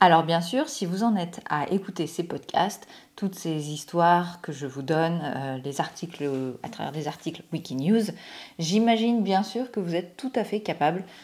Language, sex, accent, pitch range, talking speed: French, female, French, 155-200 Hz, 190 wpm